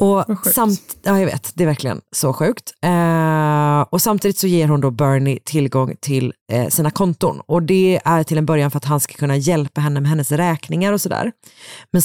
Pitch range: 145-180 Hz